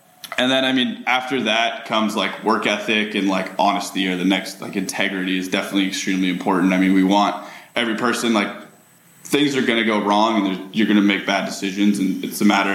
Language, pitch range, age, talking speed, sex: English, 95-105 Hz, 10-29, 215 wpm, male